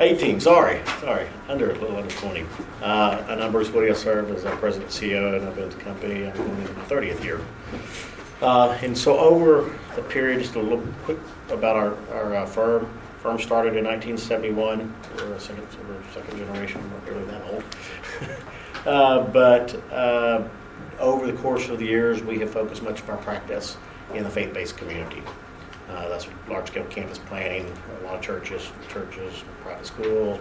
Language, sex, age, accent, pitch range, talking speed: English, male, 50-69, American, 95-115 Hz, 180 wpm